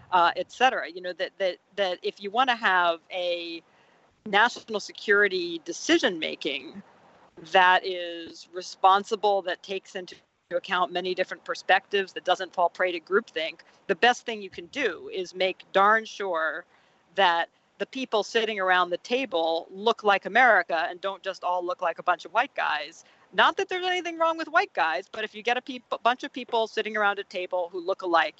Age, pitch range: 40-59, 180-220 Hz